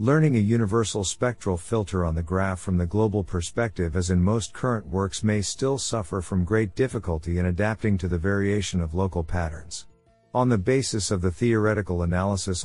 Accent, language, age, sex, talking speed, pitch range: American, English, 50-69, male, 180 wpm, 90-115 Hz